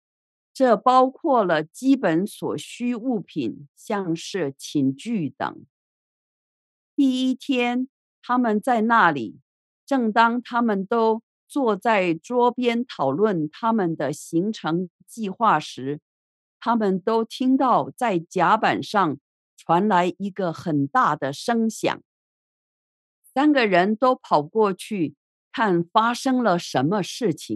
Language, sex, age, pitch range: English, female, 50-69, 170-240 Hz